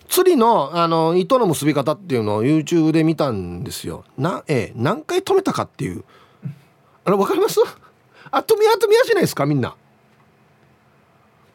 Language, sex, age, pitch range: Japanese, male, 40-59, 130-215 Hz